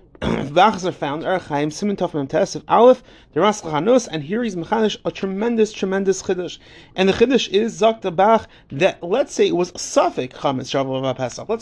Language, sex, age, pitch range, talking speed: English, male, 30-49, 150-210 Hz, 150 wpm